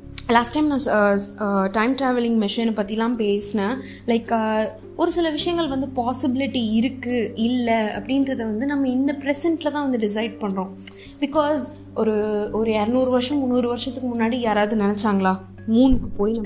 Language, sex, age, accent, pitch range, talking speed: Tamil, female, 20-39, native, 215-280 Hz, 130 wpm